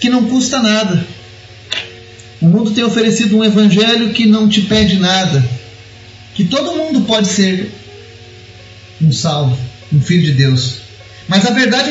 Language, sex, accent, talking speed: Portuguese, male, Brazilian, 145 wpm